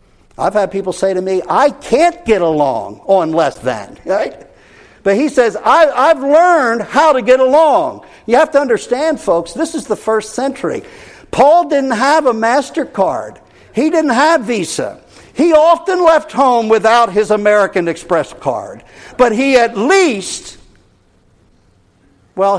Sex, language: male, English